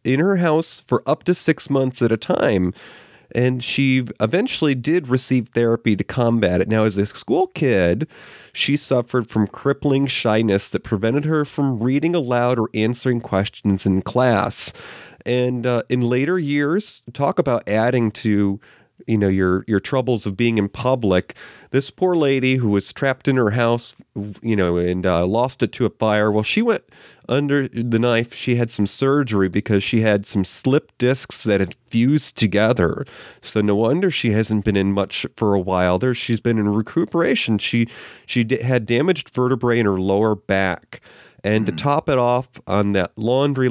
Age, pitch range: 30-49, 105-130 Hz